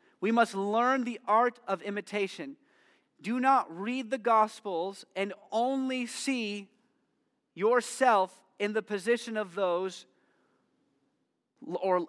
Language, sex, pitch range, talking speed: English, male, 195-255 Hz, 110 wpm